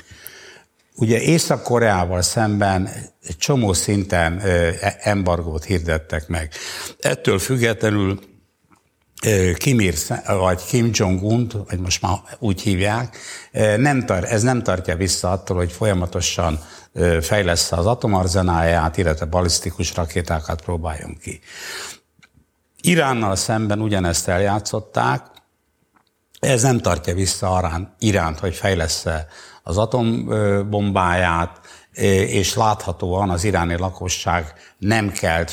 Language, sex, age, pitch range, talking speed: Hungarian, male, 60-79, 90-110 Hz, 95 wpm